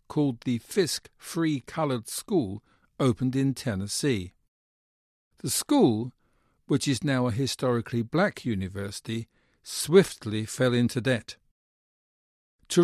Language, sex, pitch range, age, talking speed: English, male, 115-165 Hz, 50-69, 105 wpm